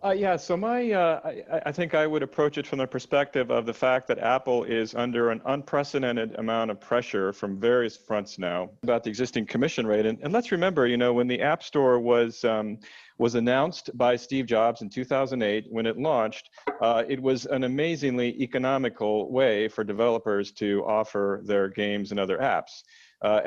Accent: American